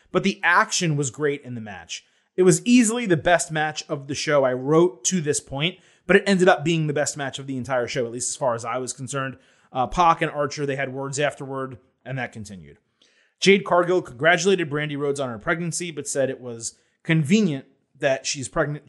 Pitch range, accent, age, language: 140-190 Hz, American, 30-49, English